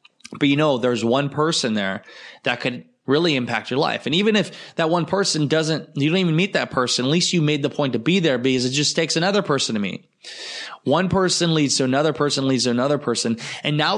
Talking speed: 235 wpm